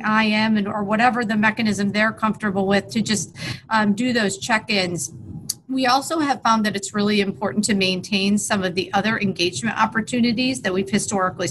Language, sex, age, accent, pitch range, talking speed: English, female, 40-59, American, 195-235 Hz, 185 wpm